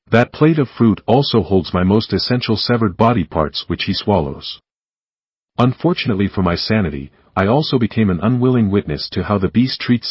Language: English